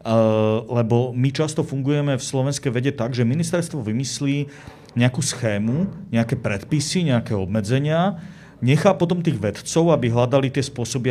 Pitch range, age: 110-135 Hz, 40-59